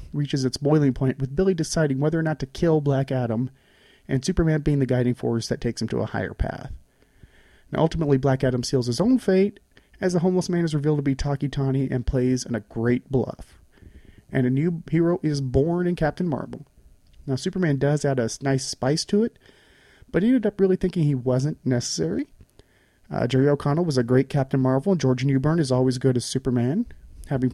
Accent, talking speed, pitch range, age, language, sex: American, 205 wpm, 130-160 Hz, 30-49, English, male